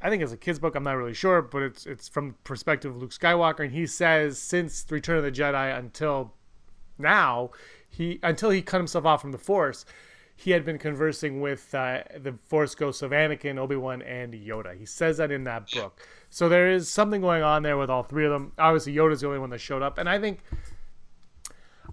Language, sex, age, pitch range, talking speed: English, male, 30-49, 130-165 Hz, 225 wpm